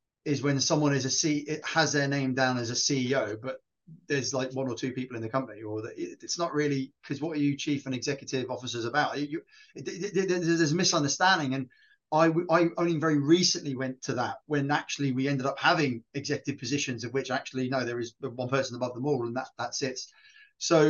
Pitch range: 130-165 Hz